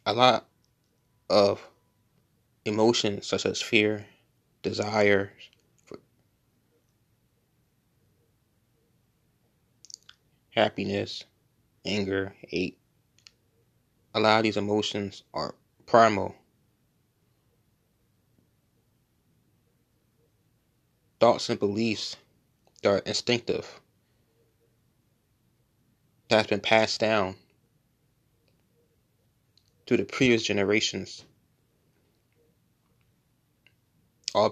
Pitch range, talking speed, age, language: 105-120 Hz, 60 wpm, 20-39, English